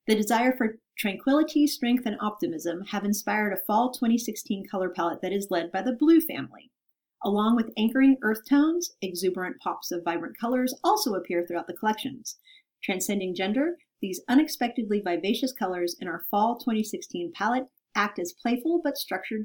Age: 40-59